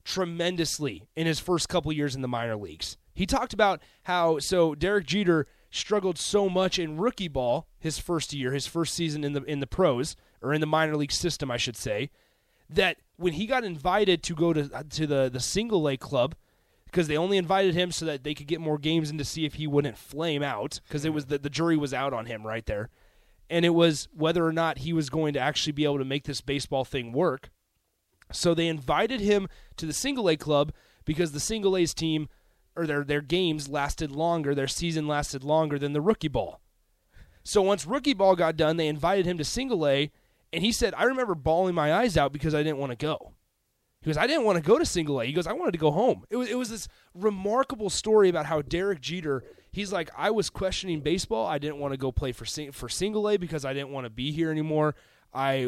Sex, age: male, 30-49